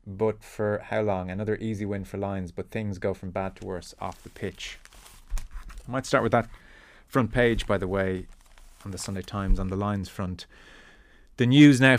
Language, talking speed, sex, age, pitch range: English, 200 wpm, male, 20-39, 95-110 Hz